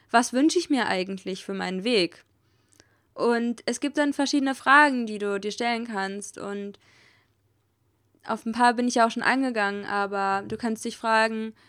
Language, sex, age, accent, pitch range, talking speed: German, female, 20-39, German, 200-240 Hz, 175 wpm